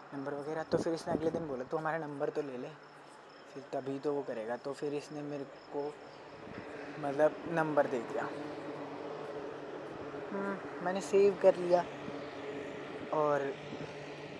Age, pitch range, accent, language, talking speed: 20-39, 135-165 Hz, native, Hindi, 140 wpm